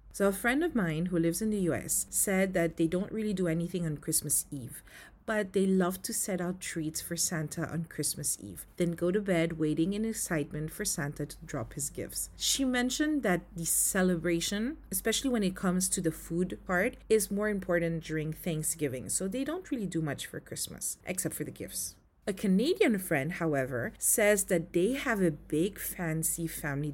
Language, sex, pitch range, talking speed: English, female, 155-195 Hz, 195 wpm